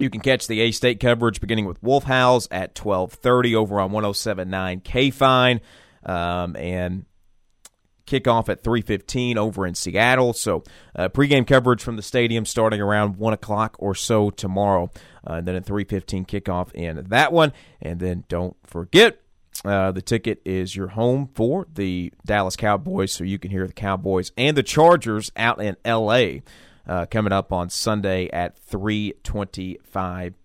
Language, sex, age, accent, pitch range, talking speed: English, male, 40-59, American, 95-125 Hz, 155 wpm